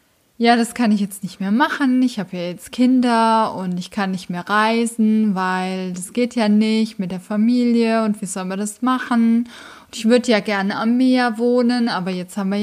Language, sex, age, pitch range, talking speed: German, female, 20-39, 205-240 Hz, 215 wpm